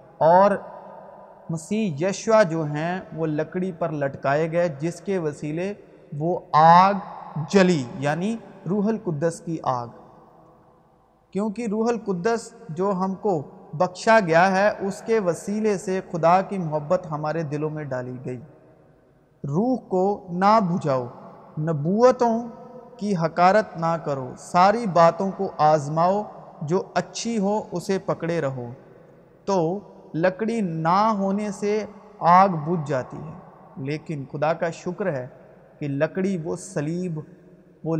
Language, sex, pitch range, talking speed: Urdu, male, 155-195 Hz, 125 wpm